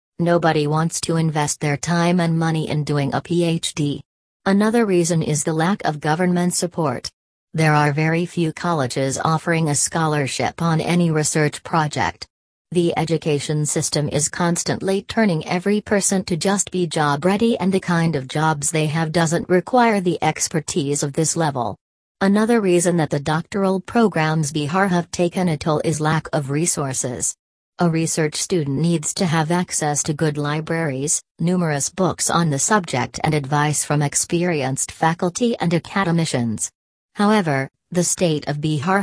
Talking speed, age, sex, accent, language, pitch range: 155 wpm, 40-59, female, American, English, 150-175 Hz